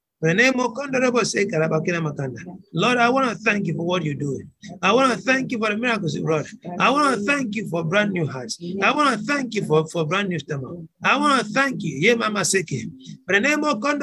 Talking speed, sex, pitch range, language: 195 wpm, male, 185-245 Hz, English